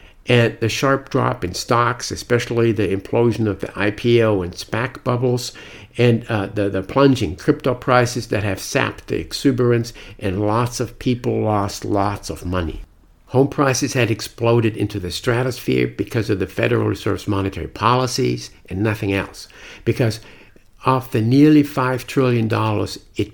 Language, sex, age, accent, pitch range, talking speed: English, male, 60-79, American, 105-130 Hz, 150 wpm